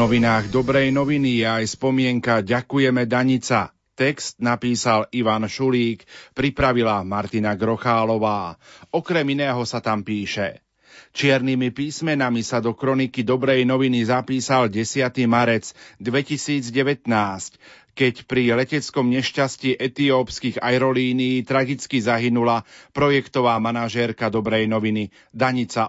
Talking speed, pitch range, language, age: 100 wpm, 115-135 Hz, Slovak, 40-59